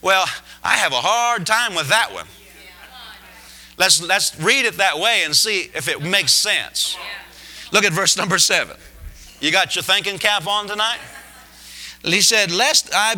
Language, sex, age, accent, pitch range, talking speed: English, male, 40-59, American, 145-195 Hz, 170 wpm